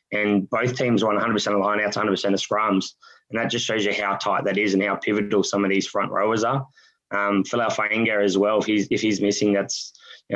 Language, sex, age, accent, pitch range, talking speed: English, male, 20-39, Australian, 100-120 Hz, 240 wpm